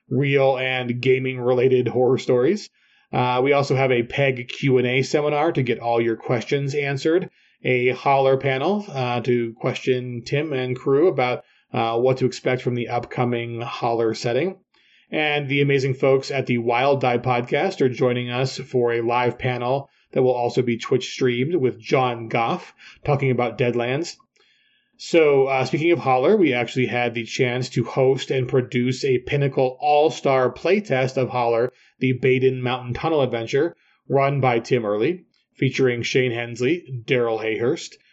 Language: English